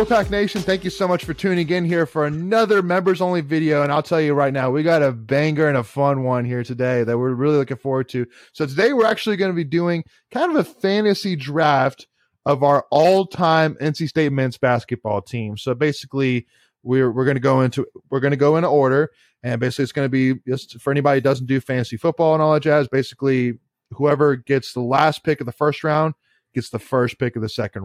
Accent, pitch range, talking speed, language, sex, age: American, 125-160 Hz, 230 wpm, English, male, 20-39